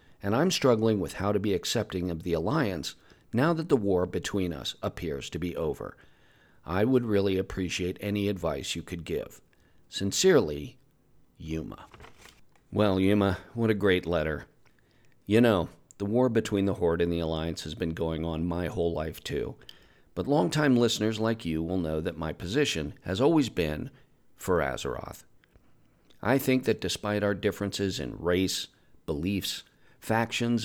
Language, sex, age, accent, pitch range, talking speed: English, male, 40-59, American, 85-115 Hz, 160 wpm